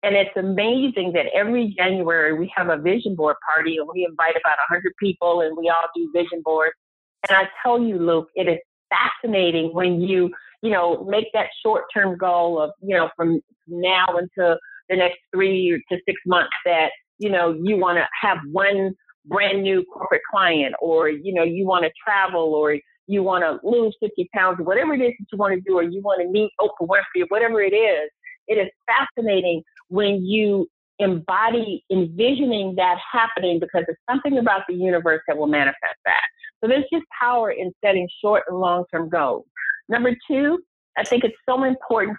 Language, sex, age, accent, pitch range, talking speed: English, female, 50-69, American, 175-235 Hz, 190 wpm